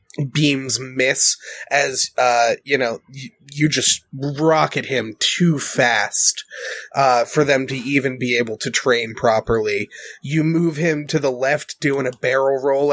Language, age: English, 20-39